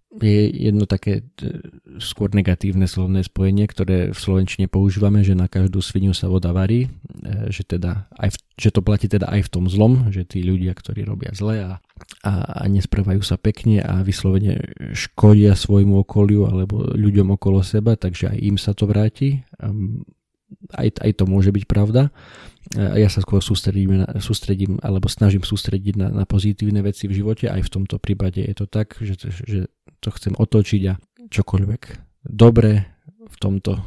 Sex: male